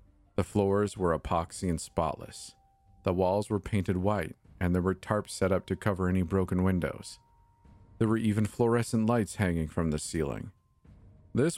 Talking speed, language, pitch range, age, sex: 165 wpm, English, 90-105 Hz, 40-59, male